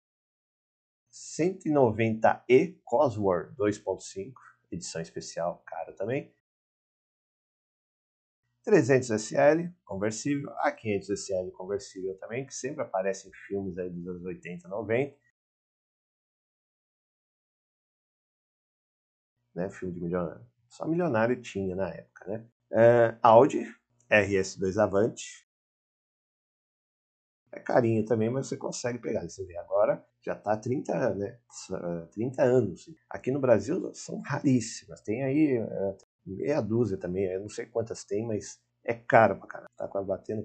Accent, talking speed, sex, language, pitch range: Brazilian, 115 wpm, male, Portuguese, 95-120 Hz